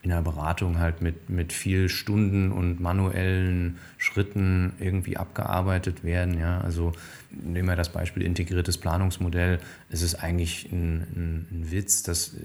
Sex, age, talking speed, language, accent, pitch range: male, 20-39, 145 wpm, German, German, 85-100 Hz